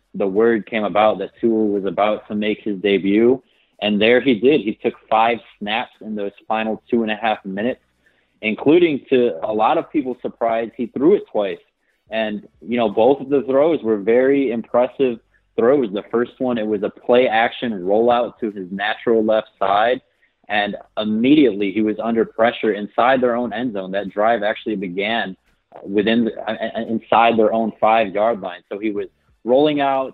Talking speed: 180 wpm